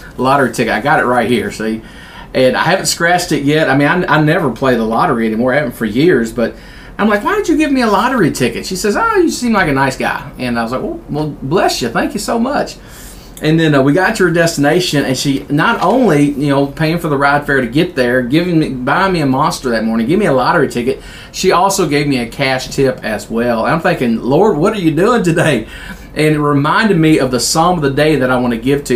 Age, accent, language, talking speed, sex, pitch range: 40-59, American, English, 265 wpm, male, 130-175 Hz